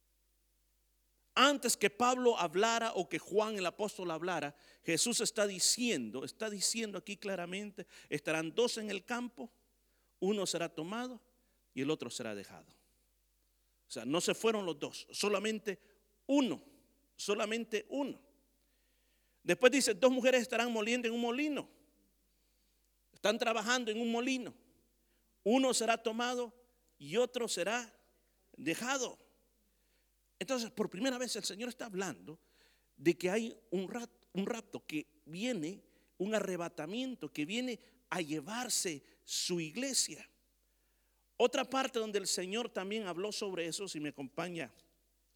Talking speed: 130 wpm